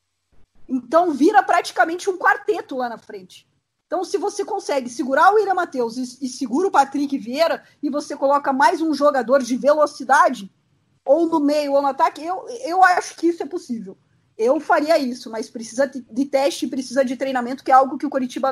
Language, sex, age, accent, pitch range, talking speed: Portuguese, female, 20-39, Brazilian, 250-315 Hz, 190 wpm